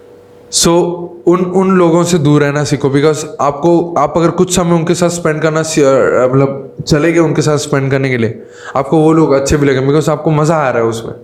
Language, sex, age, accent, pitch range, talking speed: Hindi, male, 20-39, native, 130-165 Hz, 215 wpm